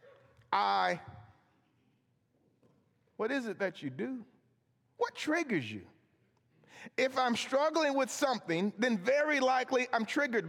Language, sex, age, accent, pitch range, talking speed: English, male, 40-59, American, 160-245 Hz, 120 wpm